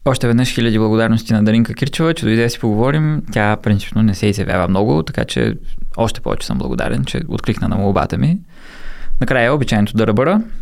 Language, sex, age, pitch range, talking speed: Bulgarian, male, 20-39, 105-135 Hz, 180 wpm